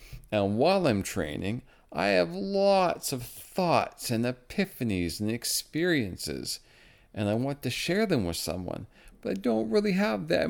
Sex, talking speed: male, 155 wpm